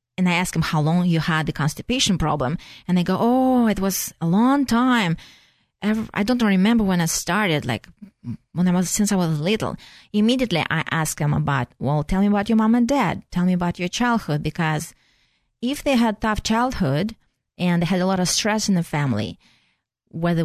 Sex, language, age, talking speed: female, English, 30-49, 205 wpm